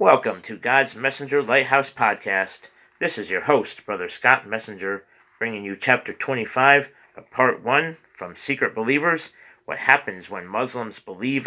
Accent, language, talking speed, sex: American, English, 145 wpm, male